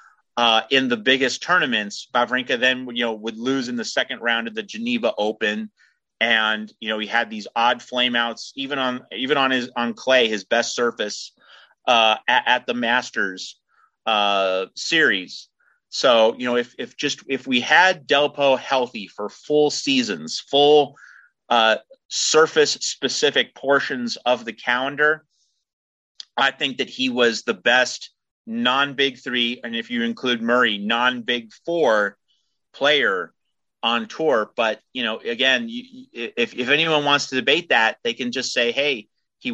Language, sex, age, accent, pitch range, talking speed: English, male, 30-49, American, 115-140 Hz, 155 wpm